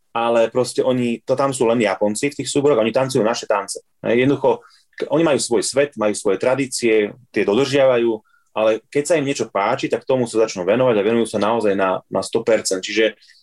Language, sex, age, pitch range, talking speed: Slovak, male, 30-49, 105-130 Hz, 195 wpm